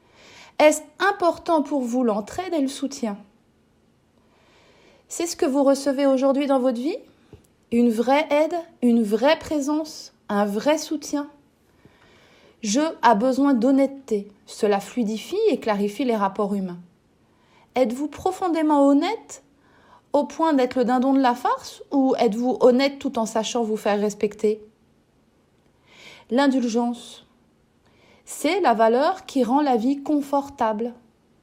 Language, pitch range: French, 225-285 Hz